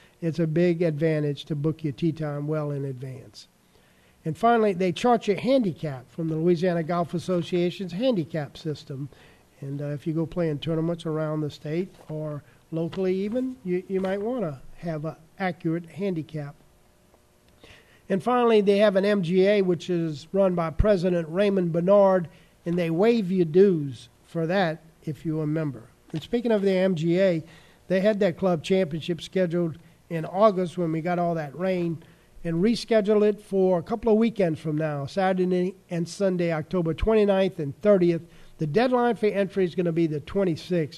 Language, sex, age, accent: English, male, 50-69, American